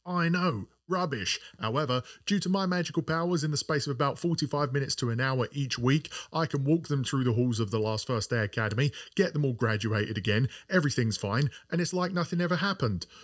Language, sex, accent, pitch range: English, male, British, 115-175 Hz